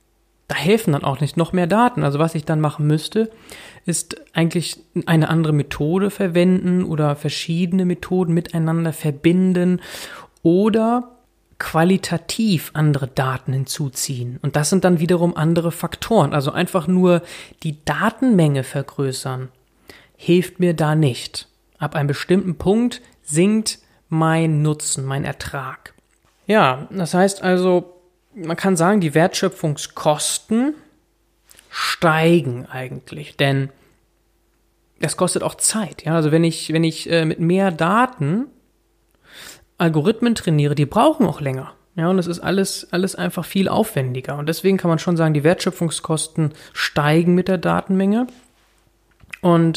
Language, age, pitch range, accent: German, 30-49, 150-185 Hz, German